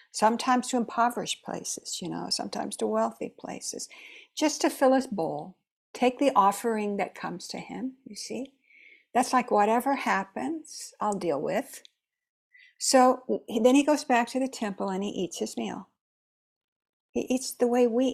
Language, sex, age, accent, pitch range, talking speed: English, female, 60-79, American, 205-260 Hz, 160 wpm